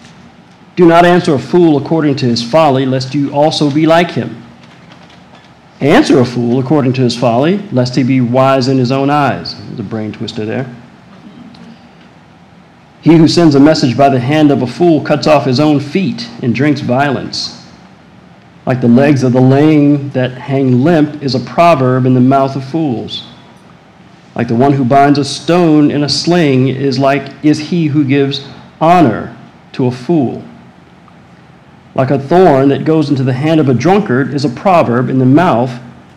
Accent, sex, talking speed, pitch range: American, male, 180 wpm, 130-160 Hz